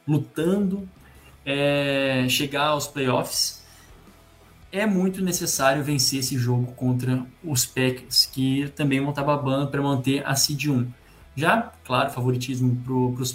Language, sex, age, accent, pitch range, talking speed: Portuguese, male, 20-39, Brazilian, 125-155 Hz, 130 wpm